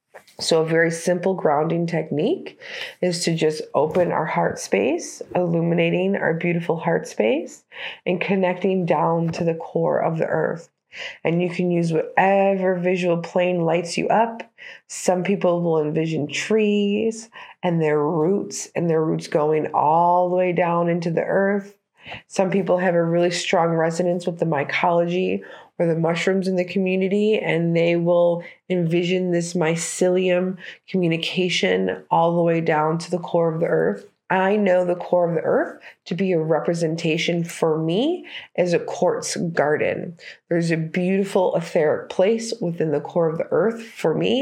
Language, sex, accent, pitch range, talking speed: English, female, American, 165-190 Hz, 160 wpm